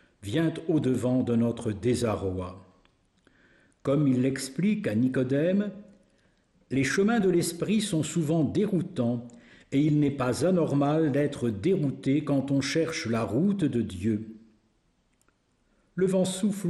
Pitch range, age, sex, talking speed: 120-175 Hz, 60-79, male, 120 wpm